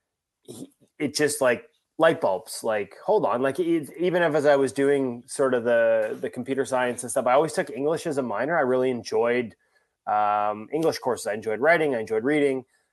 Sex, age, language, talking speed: male, 20-39, English, 195 wpm